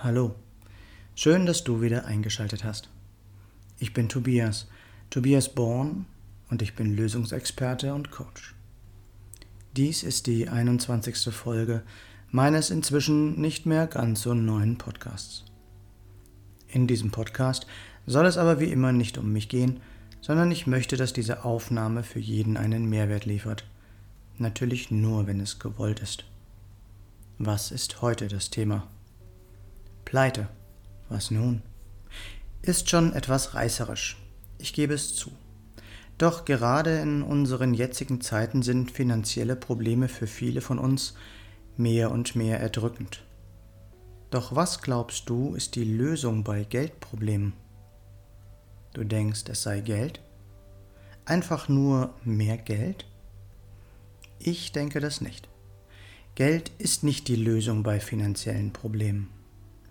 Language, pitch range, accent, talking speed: German, 100-125 Hz, German, 125 wpm